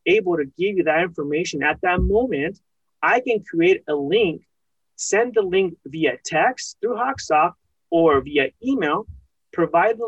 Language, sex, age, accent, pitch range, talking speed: English, male, 30-49, American, 160-225 Hz, 155 wpm